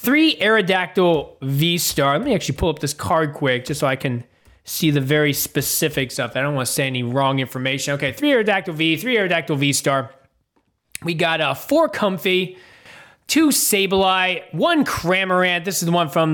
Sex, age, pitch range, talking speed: male, 20-39, 150-210 Hz, 180 wpm